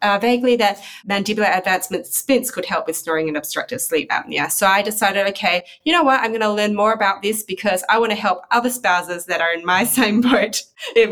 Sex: female